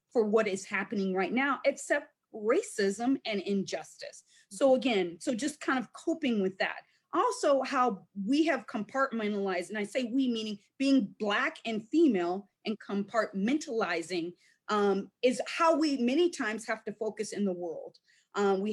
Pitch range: 210-275 Hz